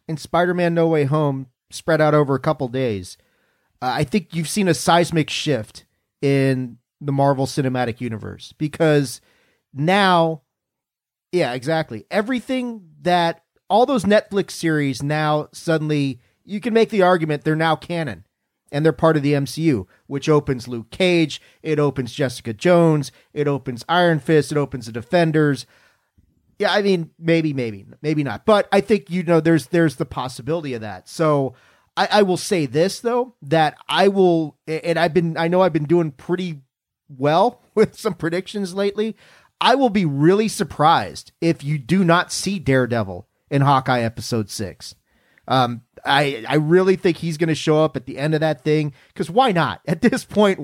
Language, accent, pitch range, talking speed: English, American, 135-175 Hz, 175 wpm